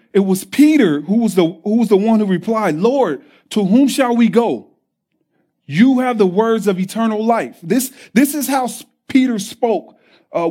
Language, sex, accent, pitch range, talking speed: English, male, American, 210-265 Hz, 185 wpm